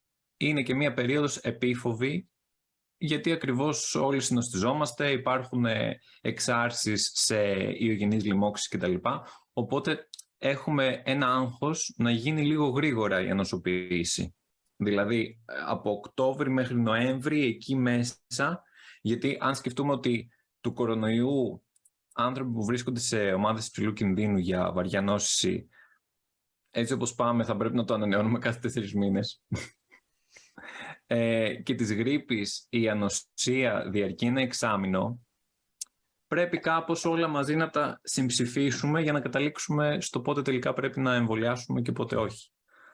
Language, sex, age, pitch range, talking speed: Greek, male, 20-39, 110-140 Hz, 120 wpm